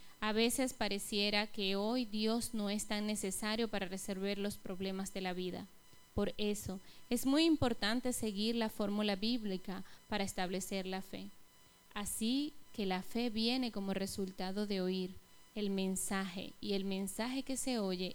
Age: 20-39